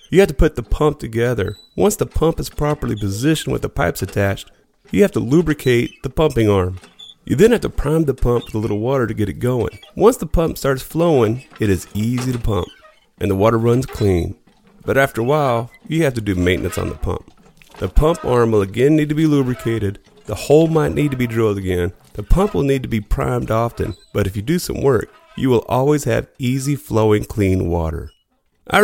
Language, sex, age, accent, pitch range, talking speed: English, male, 30-49, American, 100-150 Hz, 220 wpm